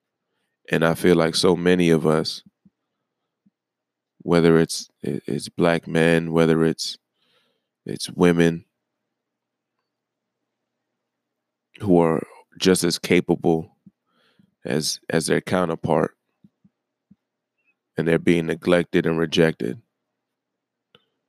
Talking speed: 90 wpm